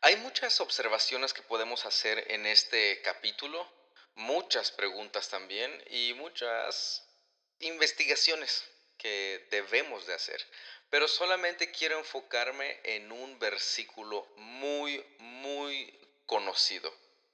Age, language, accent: 30-49, Spanish, Mexican